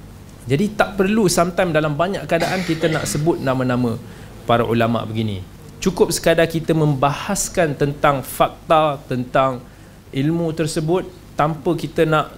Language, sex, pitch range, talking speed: Malay, male, 130-180 Hz, 125 wpm